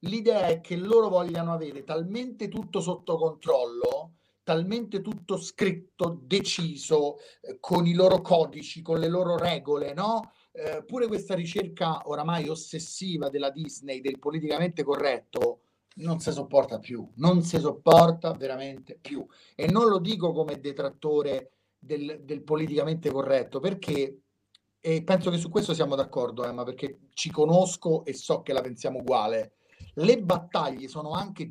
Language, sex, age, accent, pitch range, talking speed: Italian, male, 40-59, native, 145-185 Hz, 145 wpm